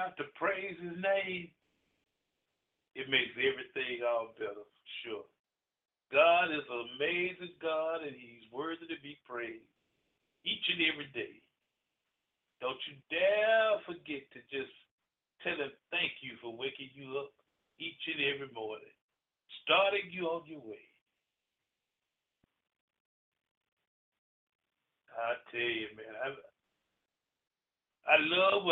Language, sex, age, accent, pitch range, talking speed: English, male, 50-69, American, 135-185 Hz, 110 wpm